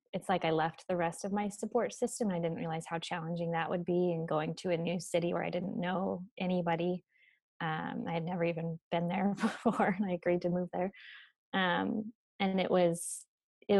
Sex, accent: female, American